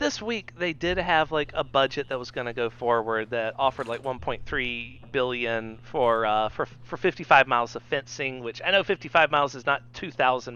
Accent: American